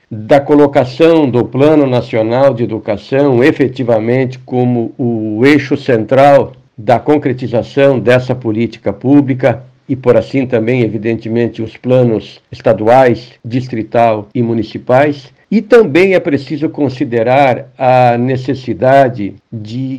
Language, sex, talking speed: Portuguese, male, 110 wpm